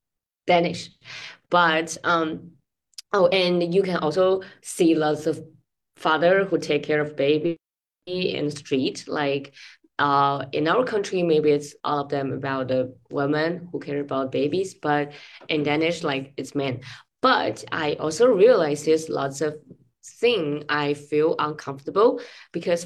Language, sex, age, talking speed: English, female, 20-39, 145 wpm